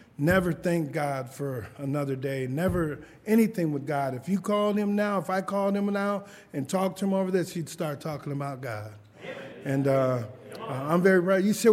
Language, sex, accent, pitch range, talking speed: English, male, American, 165-230 Hz, 200 wpm